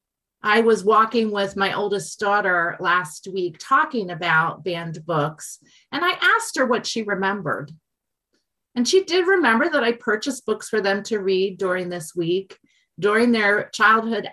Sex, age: female, 30-49